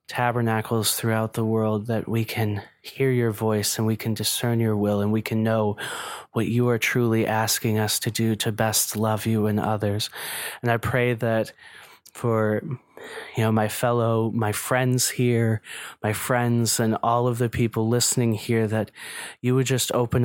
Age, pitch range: 20-39, 110-120 Hz